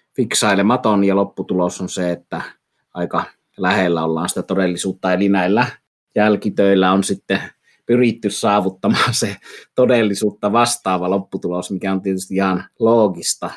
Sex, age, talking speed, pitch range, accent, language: male, 30-49, 120 wpm, 95-110 Hz, native, Finnish